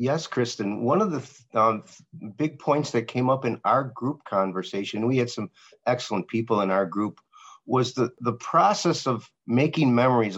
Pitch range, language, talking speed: 115-140 Hz, English, 180 wpm